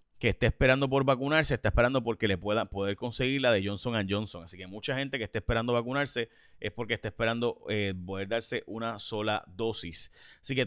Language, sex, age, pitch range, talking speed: Spanish, male, 30-49, 100-135 Hz, 200 wpm